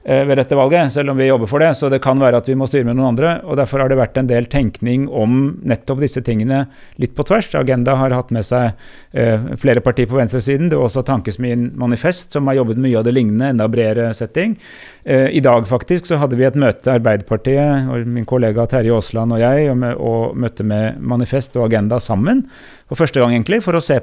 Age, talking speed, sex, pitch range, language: 30-49, 230 wpm, male, 115-140 Hz, English